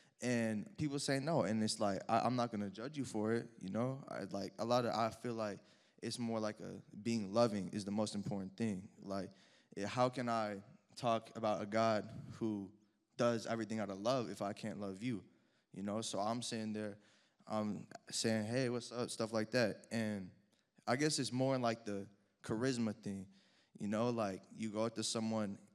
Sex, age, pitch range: male, 20-39, 105-125 Hz